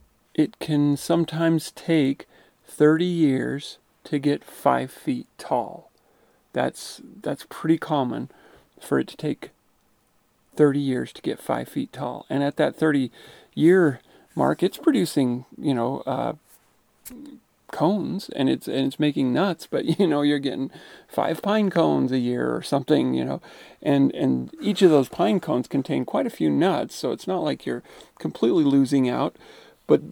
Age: 40-59